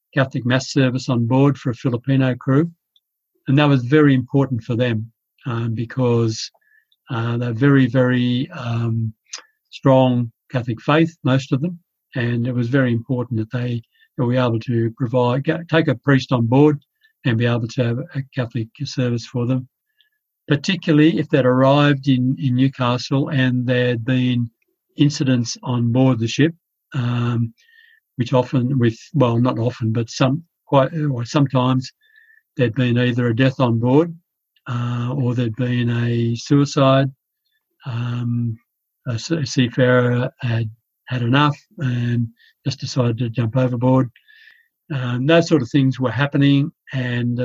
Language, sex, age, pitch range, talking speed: English, male, 50-69, 120-140 Hz, 145 wpm